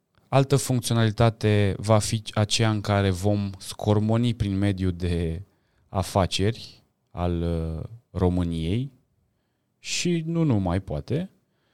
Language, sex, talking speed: Romanian, male, 95 wpm